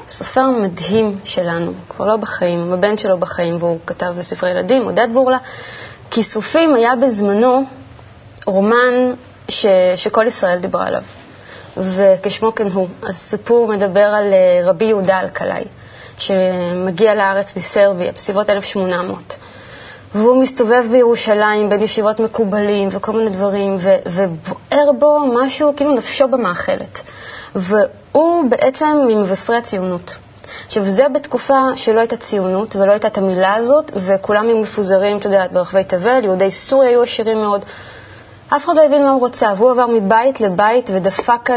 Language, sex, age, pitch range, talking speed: Hebrew, female, 20-39, 185-240 Hz, 135 wpm